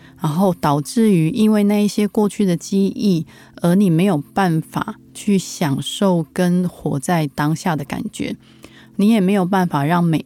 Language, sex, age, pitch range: Chinese, female, 20-39, 155-200 Hz